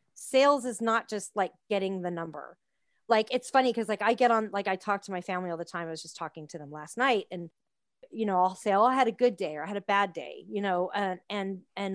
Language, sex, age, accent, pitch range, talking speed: English, female, 30-49, American, 190-245 Hz, 275 wpm